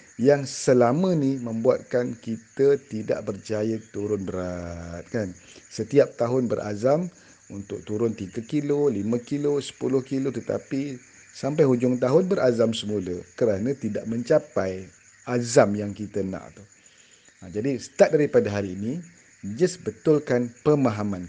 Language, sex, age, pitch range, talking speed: Malay, male, 50-69, 95-125 Hz, 120 wpm